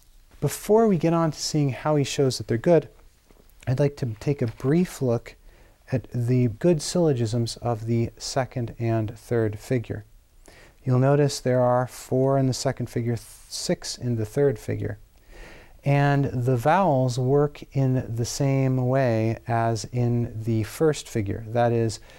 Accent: American